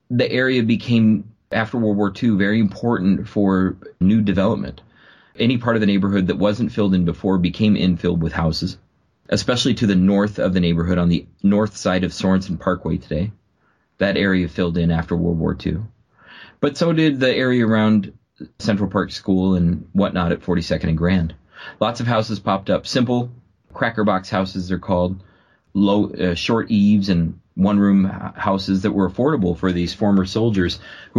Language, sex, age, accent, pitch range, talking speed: English, male, 30-49, American, 95-115 Hz, 175 wpm